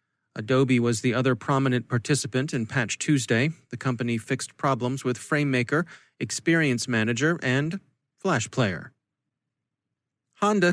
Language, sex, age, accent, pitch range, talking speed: English, male, 40-59, American, 125-160 Hz, 115 wpm